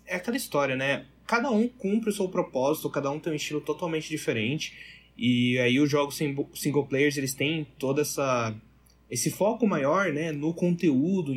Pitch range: 130-165 Hz